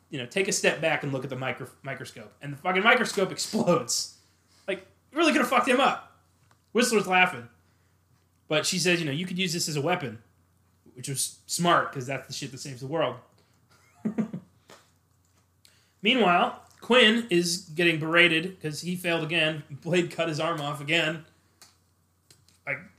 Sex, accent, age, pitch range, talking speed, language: male, American, 20-39, 115-170 Hz, 170 wpm, English